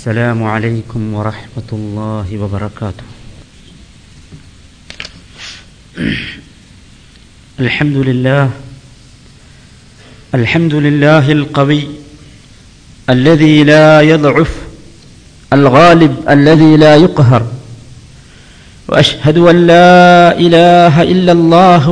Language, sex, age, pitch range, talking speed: Malayalam, male, 50-69, 130-195 Hz, 65 wpm